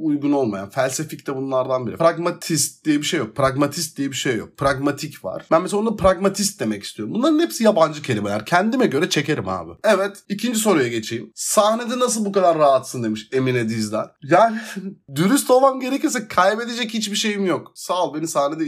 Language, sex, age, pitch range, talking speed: Turkish, male, 30-49, 130-195 Hz, 180 wpm